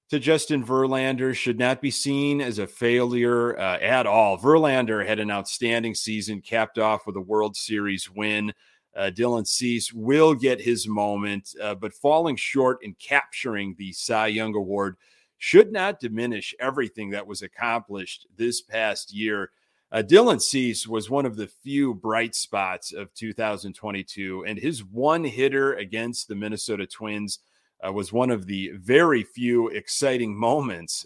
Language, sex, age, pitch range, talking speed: English, male, 30-49, 105-135 Hz, 155 wpm